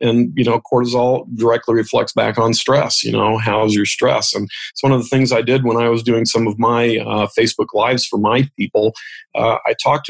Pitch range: 110-125 Hz